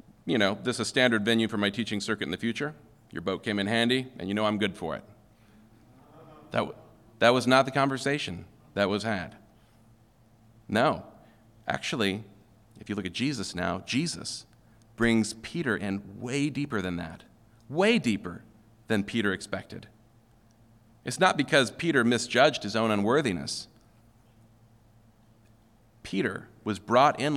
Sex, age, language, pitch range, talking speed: male, 40-59, English, 110-125 Hz, 150 wpm